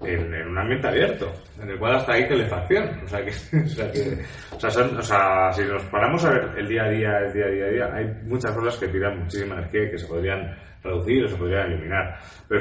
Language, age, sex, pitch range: Spanish, 30-49, male, 90-110 Hz